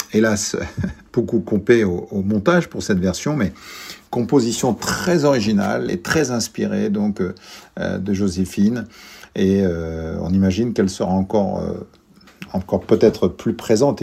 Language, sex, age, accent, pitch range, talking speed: French, male, 50-69, French, 95-135 Hz, 135 wpm